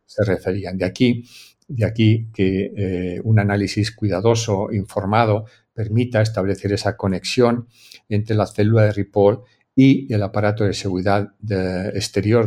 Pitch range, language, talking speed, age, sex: 100-115 Hz, Spanish, 135 wpm, 50-69, male